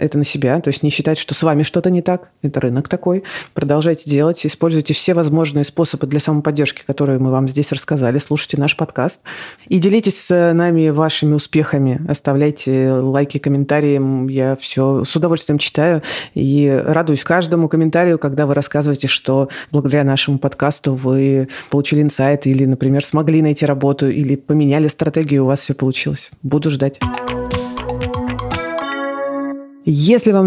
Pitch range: 140-170 Hz